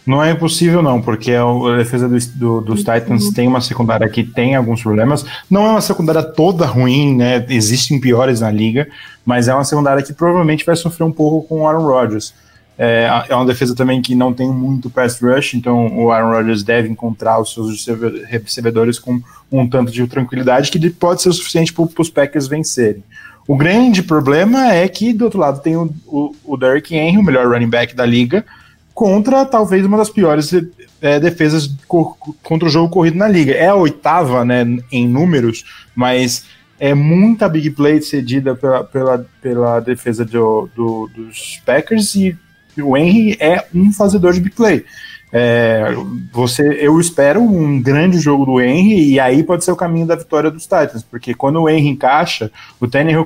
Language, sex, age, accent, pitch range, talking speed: English, male, 20-39, Brazilian, 120-165 Hz, 185 wpm